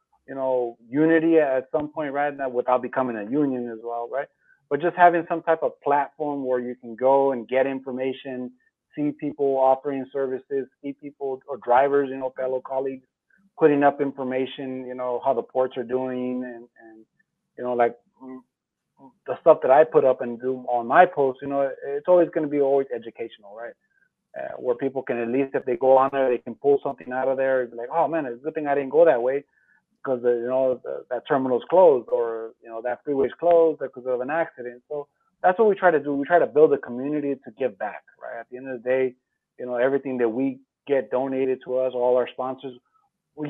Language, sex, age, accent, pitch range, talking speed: English, male, 30-49, American, 125-150 Hz, 220 wpm